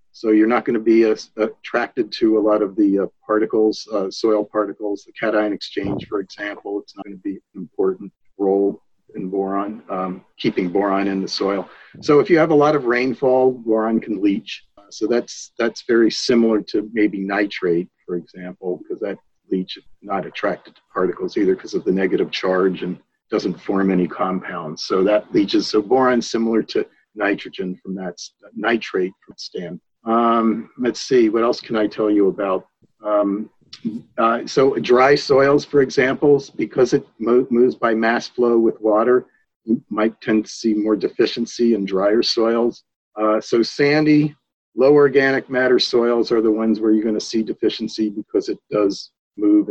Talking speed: 175 wpm